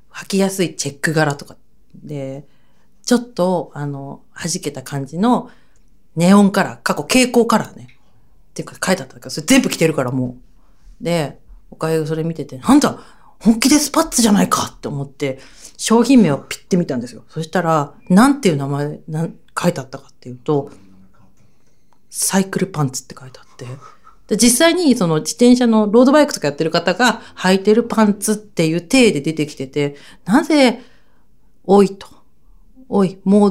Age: 40-59